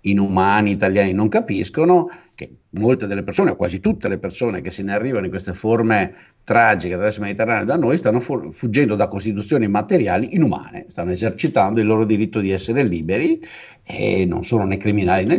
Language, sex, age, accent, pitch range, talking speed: Italian, male, 50-69, native, 100-135 Hz, 180 wpm